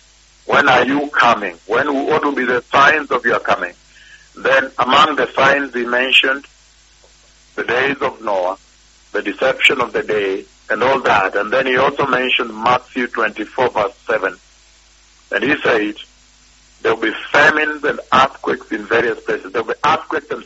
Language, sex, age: English, male, 50-69